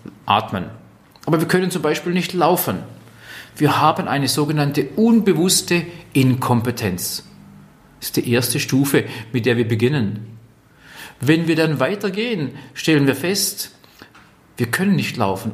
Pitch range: 130-200 Hz